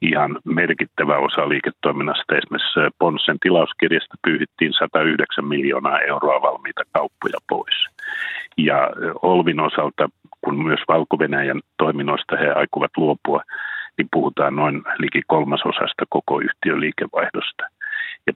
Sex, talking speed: male, 105 wpm